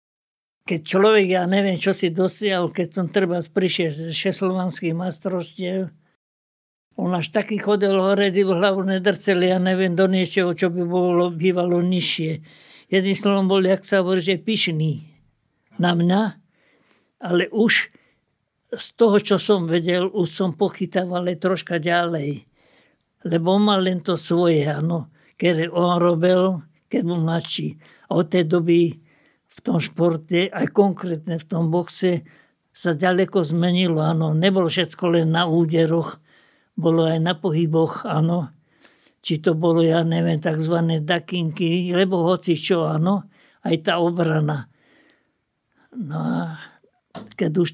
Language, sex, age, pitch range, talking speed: Slovak, male, 60-79, 165-190 Hz, 135 wpm